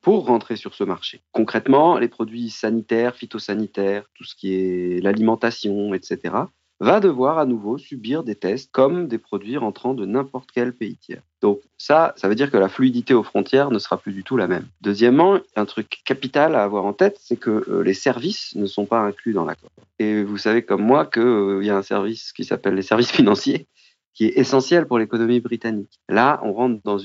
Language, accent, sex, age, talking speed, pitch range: French, French, male, 40-59, 205 wpm, 100-130 Hz